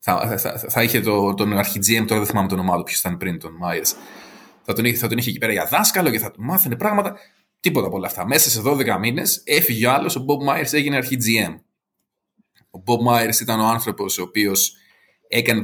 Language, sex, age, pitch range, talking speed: Greek, male, 20-39, 105-120 Hz, 215 wpm